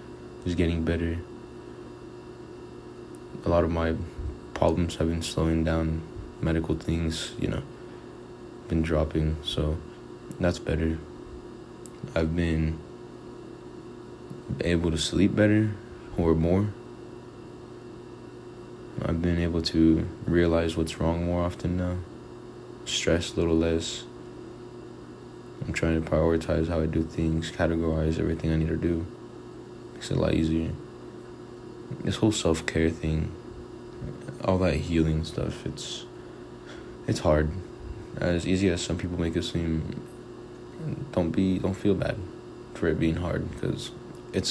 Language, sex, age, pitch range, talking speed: English, male, 20-39, 80-85 Hz, 125 wpm